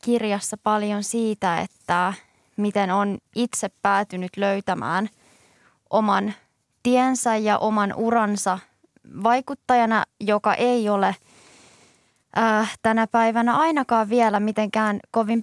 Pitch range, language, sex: 200-230 Hz, Finnish, female